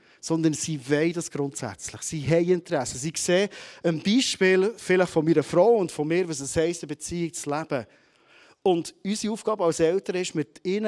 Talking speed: 190 wpm